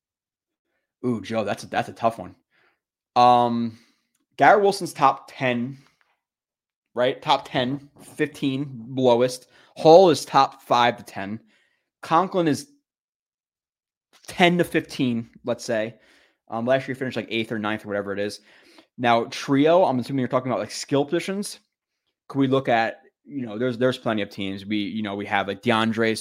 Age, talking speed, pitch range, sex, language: 20-39, 165 wpm, 110-140 Hz, male, English